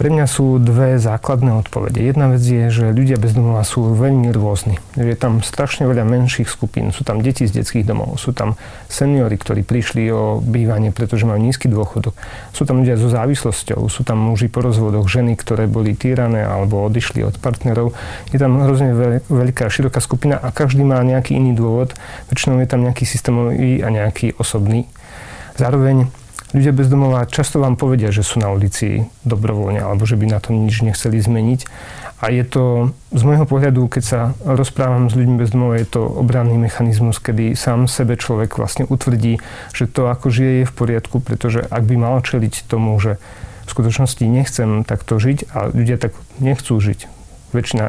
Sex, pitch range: male, 110-130 Hz